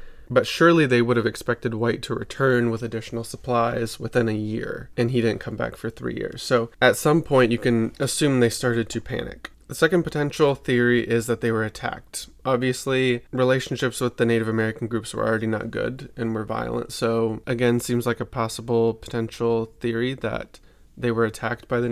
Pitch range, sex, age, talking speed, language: 115-130 Hz, male, 20-39, 195 wpm, English